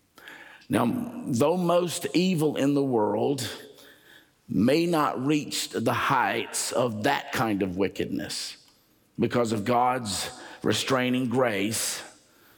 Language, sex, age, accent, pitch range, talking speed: English, male, 50-69, American, 110-145 Hz, 105 wpm